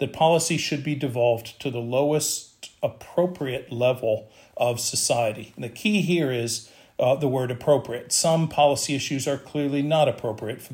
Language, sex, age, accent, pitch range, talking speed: English, male, 40-59, American, 120-145 Hz, 155 wpm